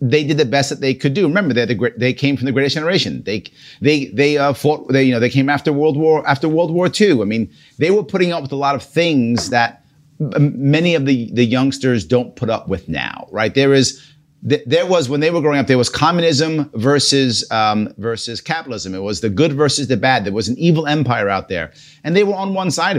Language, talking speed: English, 245 wpm